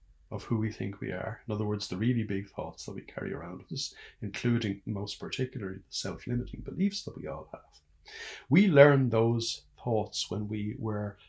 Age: 60-79